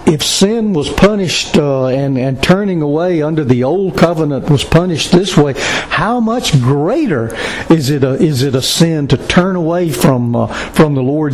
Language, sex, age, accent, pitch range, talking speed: English, male, 60-79, American, 135-175 Hz, 185 wpm